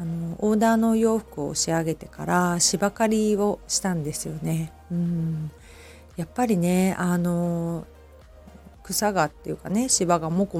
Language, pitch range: Japanese, 155-190 Hz